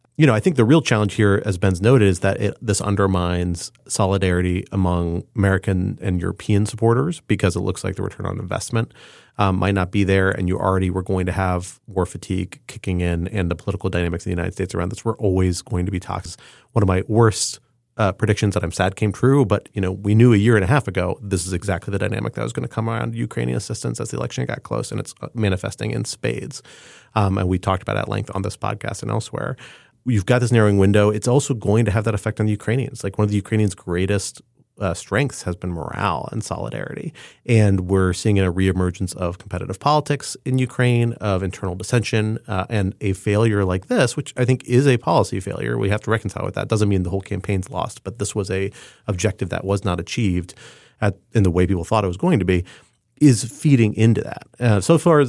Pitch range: 95-115 Hz